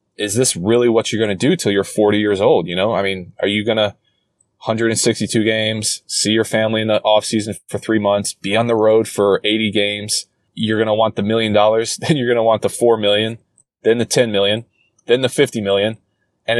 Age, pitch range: 20-39, 100-115 Hz